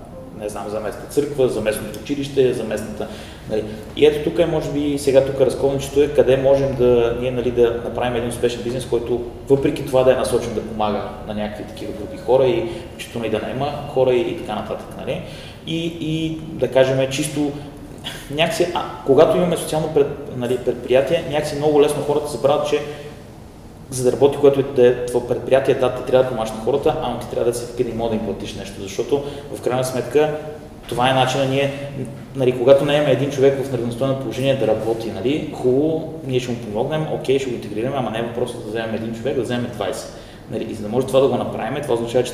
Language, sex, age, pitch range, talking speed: Bulgarian, male, 30-49, 120-140 Hz, 215 wpm